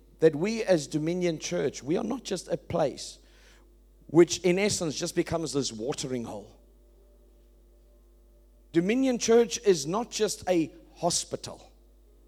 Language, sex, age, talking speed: English, male, 50-69, 125 wpm